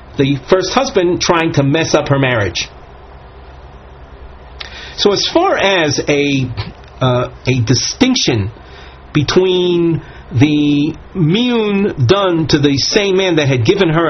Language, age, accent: English, 40-59, American